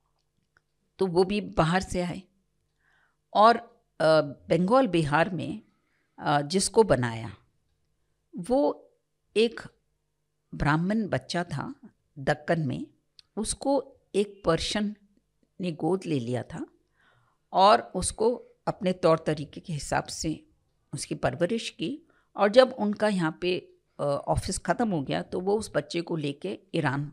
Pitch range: 150-220 Hz